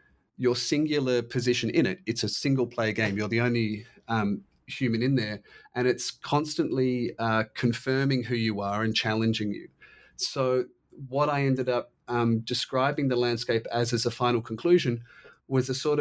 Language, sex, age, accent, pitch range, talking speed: English, male, 30-49, Australian, 110-130 Hz, 165 wpm